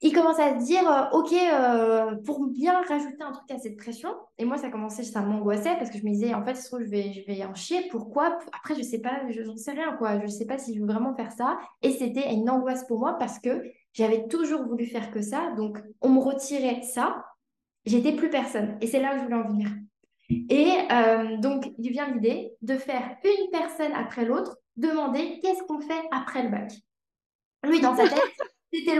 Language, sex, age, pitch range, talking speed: French, female, 20-39, 230-300 Hz, 230 wpm